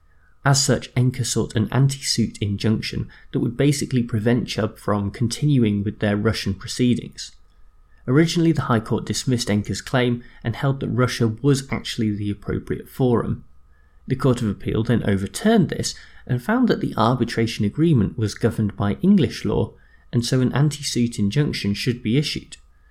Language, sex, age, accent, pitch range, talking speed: English, male, 30-49, British, 105-135 Hz, 155 wpm